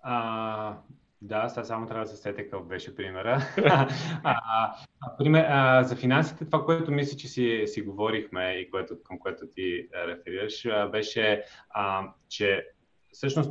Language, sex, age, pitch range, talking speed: Bulgarian, male, 30-49, 110-140 Hz, 135 wpm